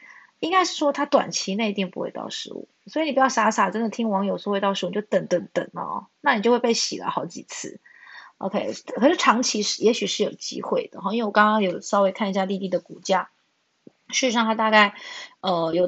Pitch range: 195-260 Hz